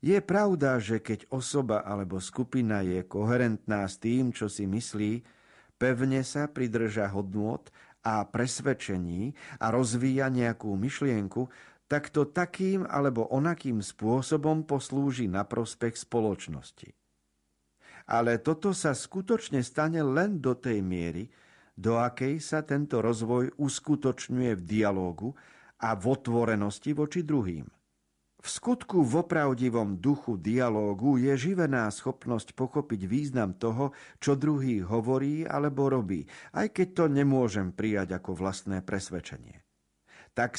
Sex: male